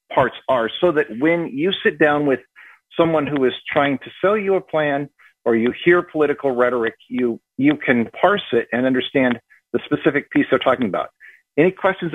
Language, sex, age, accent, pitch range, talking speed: English, male, 50-69, American, 125-175 Hz, 190 wpm